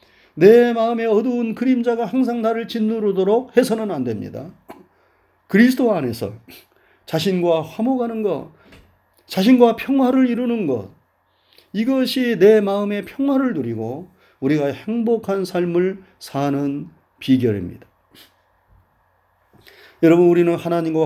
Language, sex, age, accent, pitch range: Korean, male, 40-59, native, 130-215 Hz